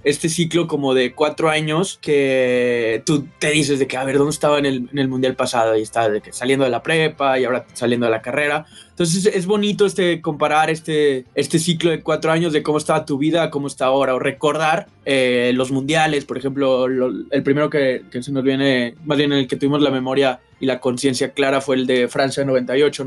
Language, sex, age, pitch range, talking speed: Spanish, male, 20-39, 130-155 Hz, 225 wpm